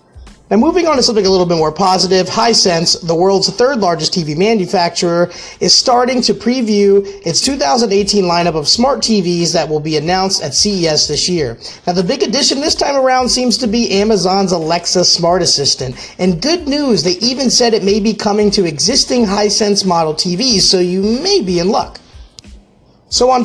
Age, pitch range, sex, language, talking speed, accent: 30-49, 170-225 Hz, male, English, 185 wpm, American